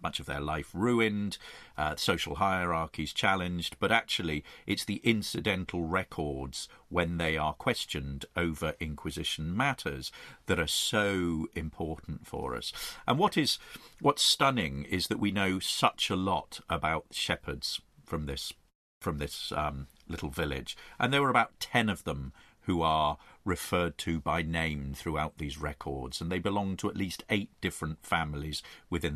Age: 50-69